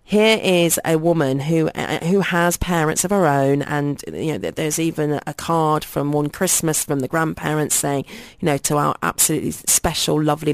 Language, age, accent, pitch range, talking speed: English, 30-49, British, 140-160 Hz, 180 wpm